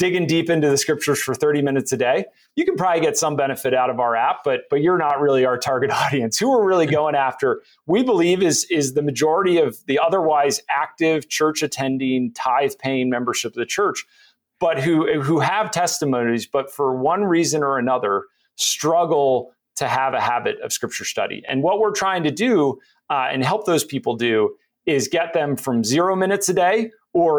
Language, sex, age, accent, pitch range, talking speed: English, male, 30-49, American, 135-185 Hz, 200 wpm